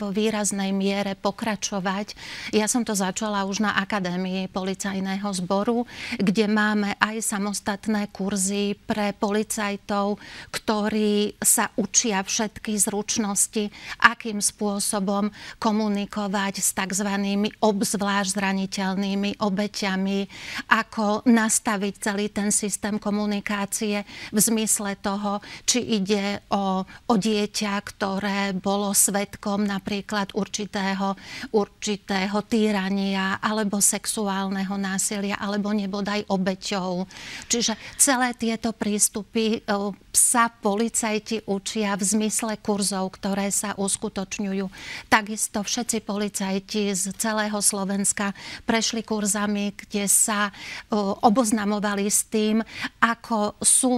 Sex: female